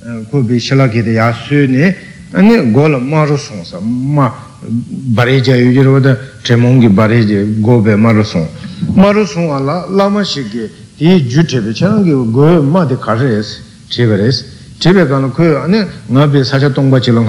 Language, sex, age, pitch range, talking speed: Italian, male, 60-79, 115-165 Hz, 50 wpm